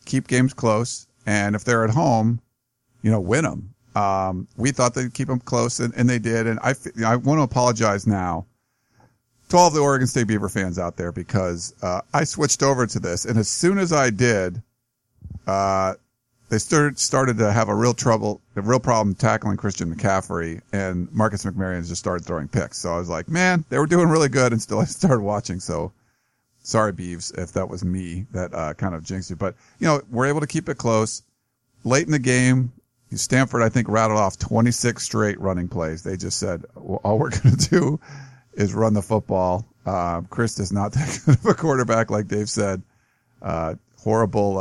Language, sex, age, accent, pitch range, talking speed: English, male, 40-59, American, 95-125 Hz, 205 wpm